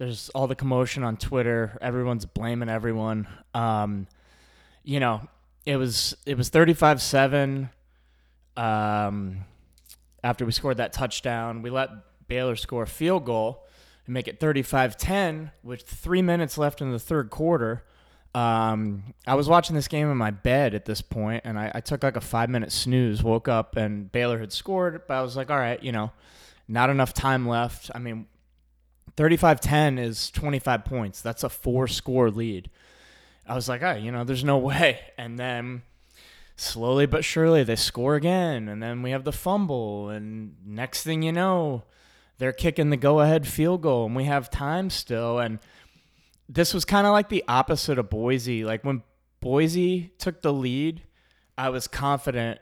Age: 20-39